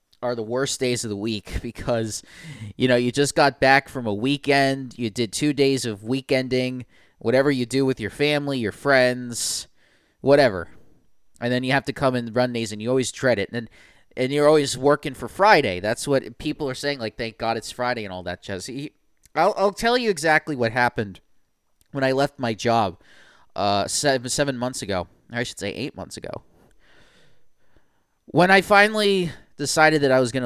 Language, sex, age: English, male, 30-49